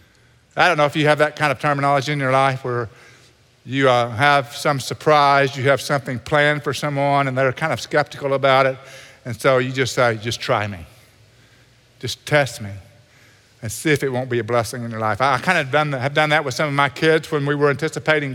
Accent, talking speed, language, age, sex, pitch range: American, 230 wpm, English, 50-69, male, 140-195 Hz